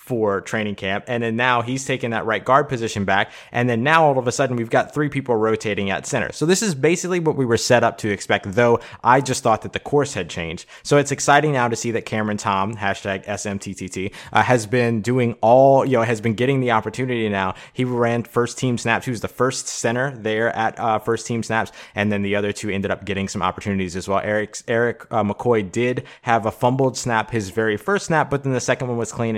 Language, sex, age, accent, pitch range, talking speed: English, male, 20-39, American, 105-130 Hz, 245 wpm